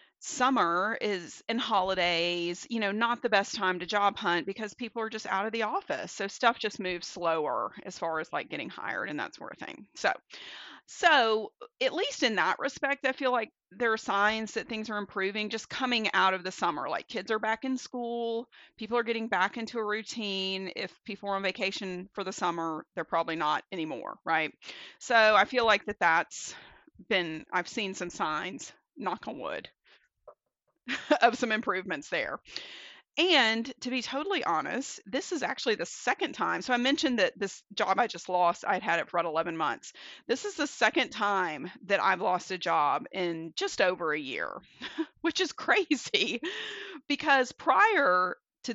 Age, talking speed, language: 40-59, 185 wpm, English